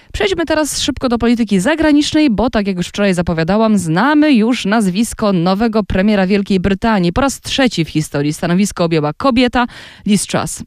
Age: 20-39